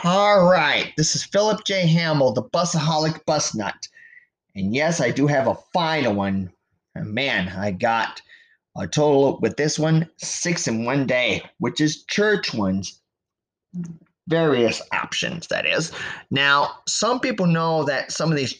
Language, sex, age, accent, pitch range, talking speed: English, male, 30-49, American, 110-160 Hz, 150 wpm